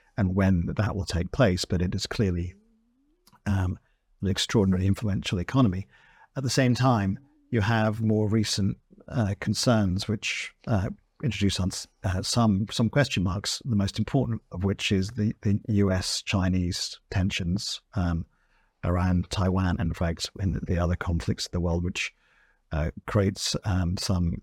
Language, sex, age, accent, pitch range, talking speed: English, male, 50-69, British, 95-115 Hz, 150 wpm